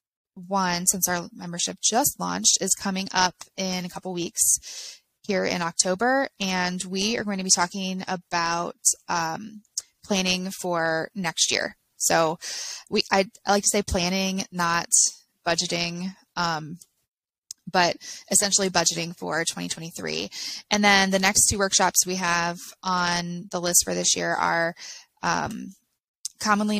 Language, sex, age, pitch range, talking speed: English, female, 20-39, 175-200 Hz, 140 wpm